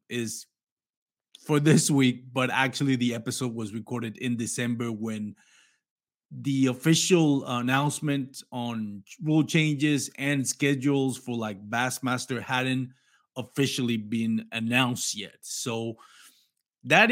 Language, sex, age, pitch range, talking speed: English, male, 30-49, 110-145 Hz, 110 wpm